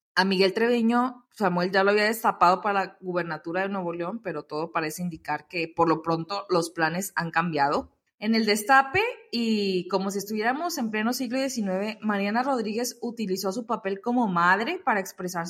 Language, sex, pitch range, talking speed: Spanish, female, 185-240 Hz, 180 wpm